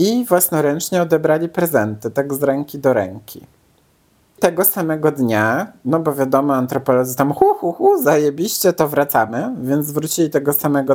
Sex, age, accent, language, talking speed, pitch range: male, 50-69, native, Polish, 150 wpm, 135-160 Hz